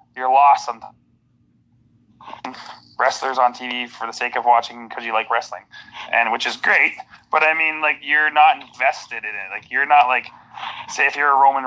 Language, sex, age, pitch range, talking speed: English, male, 20-39, 125-145 Hz, 190 wpm